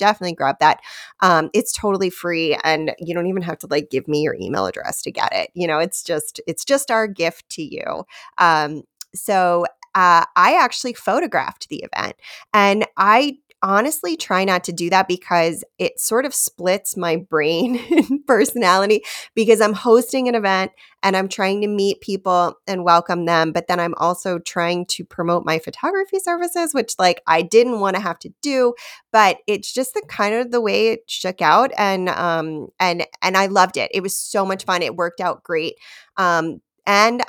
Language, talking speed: English, 190 wpm